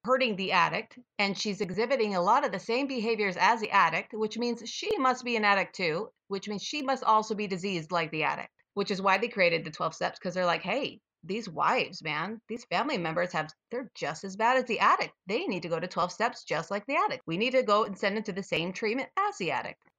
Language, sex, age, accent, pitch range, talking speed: English, female, 30-49, American, 185-255 Hz, 250 wpm